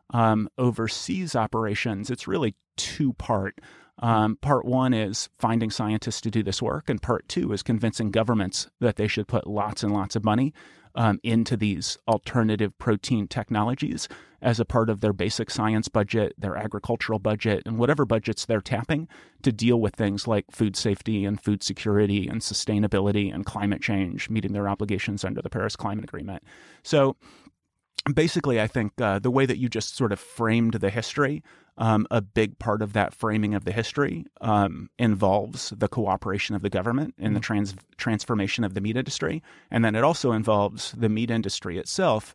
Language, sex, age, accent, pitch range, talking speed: English, male, 30-49, American, 105-120 Hz, 175 wpm